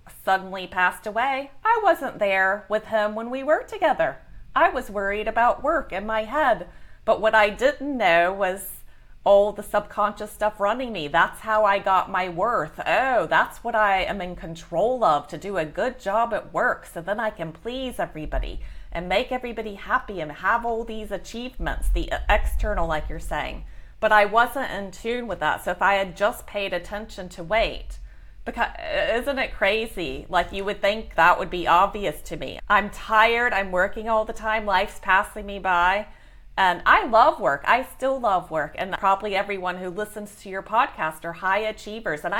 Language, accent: English, American